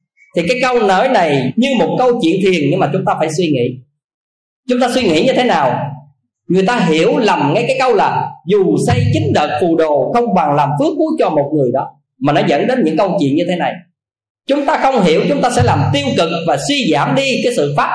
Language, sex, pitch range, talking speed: Vietnamese, male, 155-250 Hz, 245 wpm